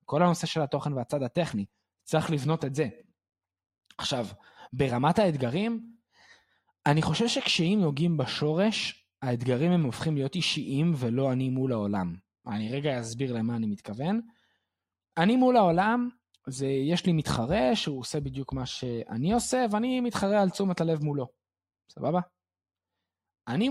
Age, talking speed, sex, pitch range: 20-39, 135 wpm, male, 130-200 Hz